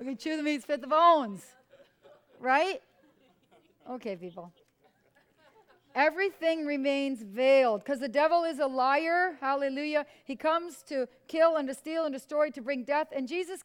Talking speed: 155 wpm